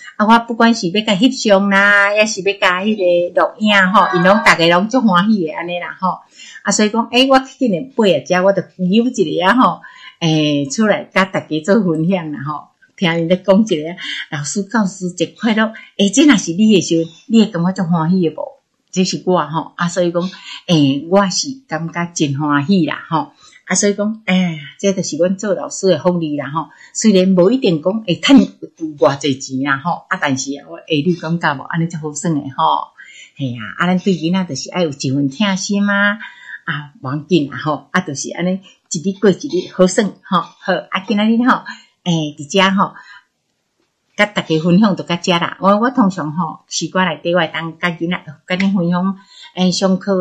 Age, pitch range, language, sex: 60-79, 165-200 Hz, Chinese, female